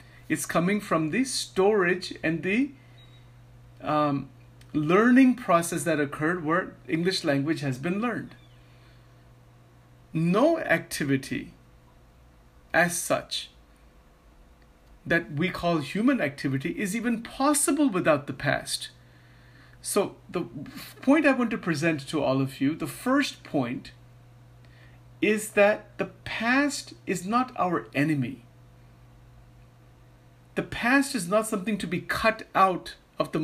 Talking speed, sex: 120 wpm, male